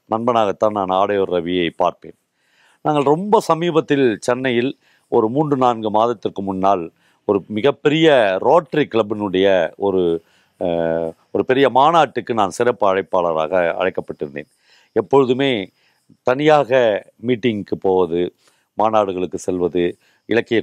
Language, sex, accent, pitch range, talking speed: Tamil, male, native, 100-140 Hz, 95 wpm